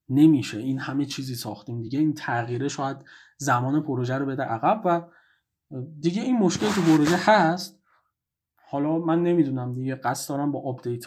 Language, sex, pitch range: Persian, male, 130-185 Hz